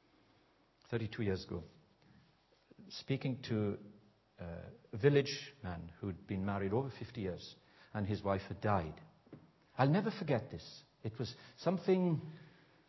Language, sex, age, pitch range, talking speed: English, male, 60-79, 110-155 Hz, 120 wpm